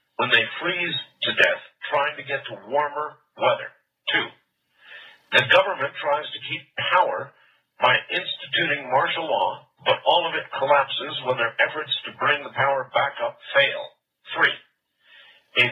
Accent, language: American, English